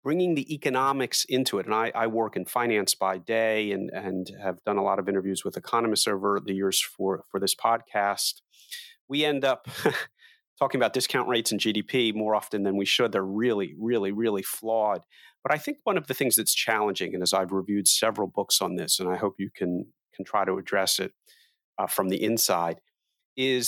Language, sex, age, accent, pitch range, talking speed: English, male, 40-59, American, 95-130 Hz, 205 wpm